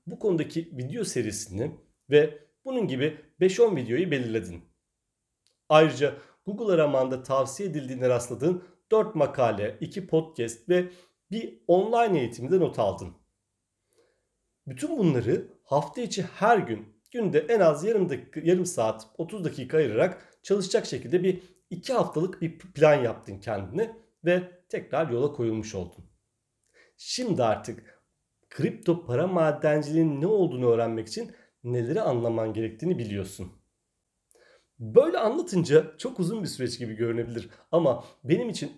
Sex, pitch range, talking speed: male, 120-180 Hz, 125 wpm